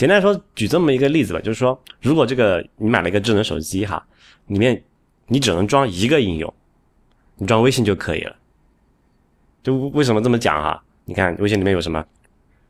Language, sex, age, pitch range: Chinese, male, 20-39, 90-125 Hz